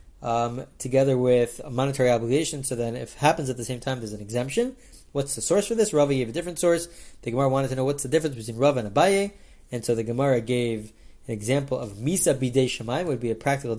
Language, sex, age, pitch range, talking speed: English, male, 30-49, 120-155 Hz, 235 wpm